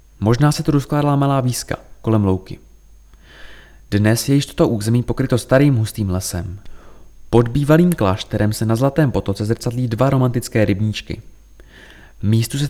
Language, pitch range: Czech, 105-140 Hz